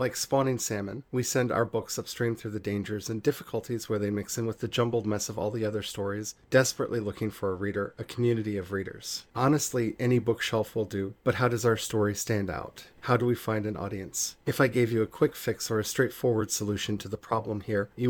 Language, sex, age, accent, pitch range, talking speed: English, male, 40-59, American, 105-120 Hz, 230 wpm